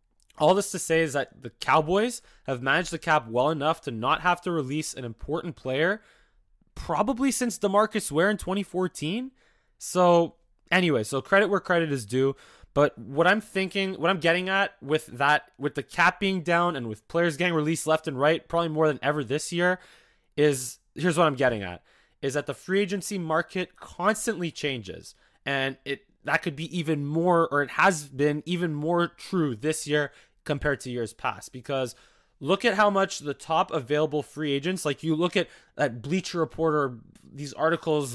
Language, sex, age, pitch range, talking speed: English, male, 20-39, 140-175 Hz, 185 wpm